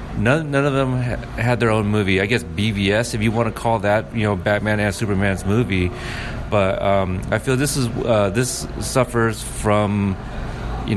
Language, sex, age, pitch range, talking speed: English, male, 30-49, 100-115 Hz, 190 wpm